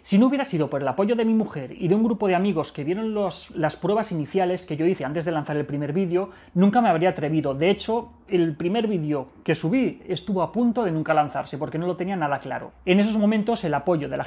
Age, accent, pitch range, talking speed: 30-49, Spanish, 155-210 Hz, 250 wpm